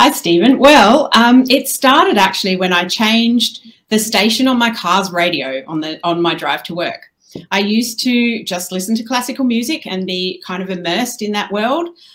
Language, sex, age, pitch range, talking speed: English, female, 40-59, 170-230 Hz, 190 wpm